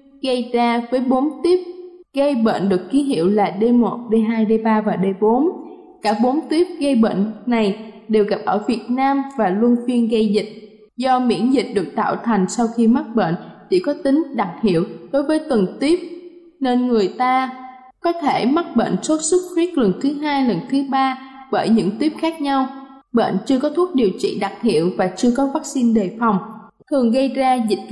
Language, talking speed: Vietnamese, 195 wpm